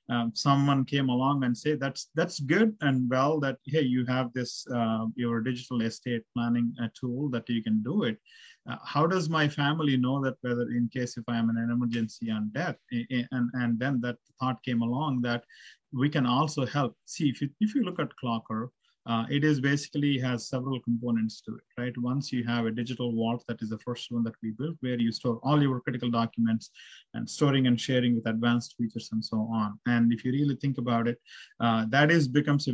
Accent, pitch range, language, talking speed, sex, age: Indian, 115-130 Hz, English, 220 wpm, male, 30-49